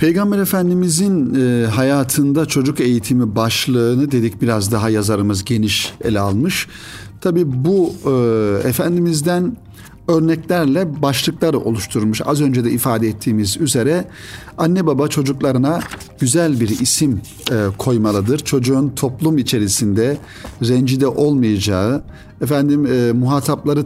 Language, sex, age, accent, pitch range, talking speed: Turkish, male, 50-69, native, 105-145 Hz, 100 wpm